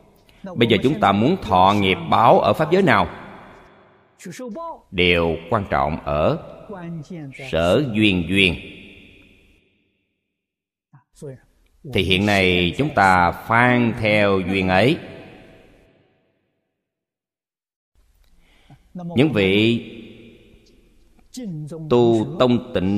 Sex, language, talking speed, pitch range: male, Vietnamese, 85 wpm, 90-120 Hz